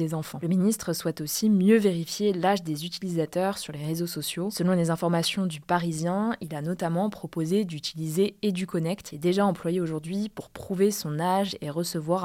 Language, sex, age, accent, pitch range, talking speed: French, female, 20-39, French, 165-195 Hz, 175 wpm